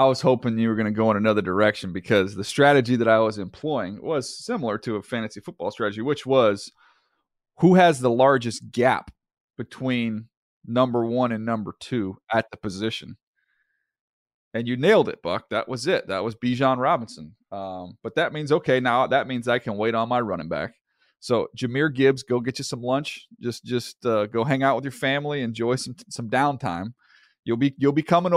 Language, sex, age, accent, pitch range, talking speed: English, male, 30-49, American, 110-135 Hz, 200 wpm